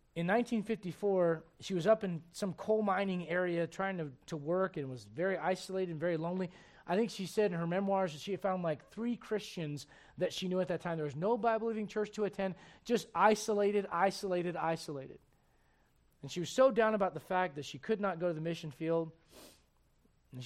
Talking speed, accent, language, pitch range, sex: 210 wpm, American, English, 165-220 Hz, male